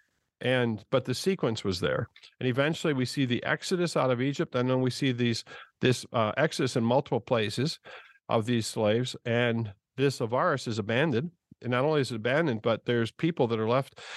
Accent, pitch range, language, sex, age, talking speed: American, 115-145 Hz, English, male, 50-69, 195 wpm